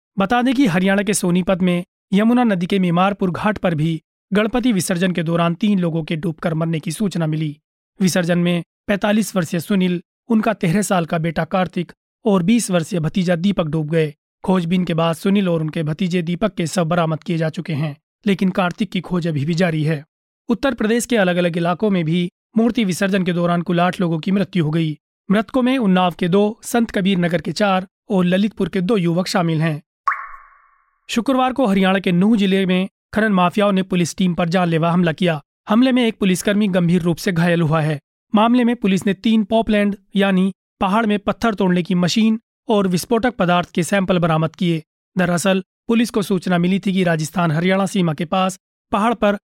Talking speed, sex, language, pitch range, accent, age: 200 wpm, male, Hindi, 175-205 Hz, native, 30-49